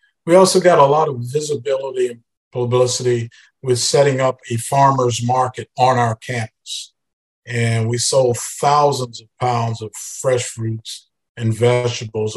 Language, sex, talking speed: English, male, 140 wpm